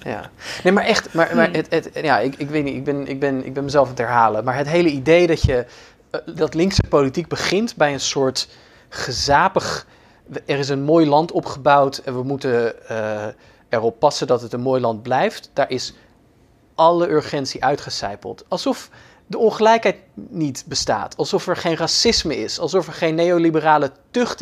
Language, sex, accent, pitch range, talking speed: Dutch, male, Dutch, 135-200 Hz, 185 wpm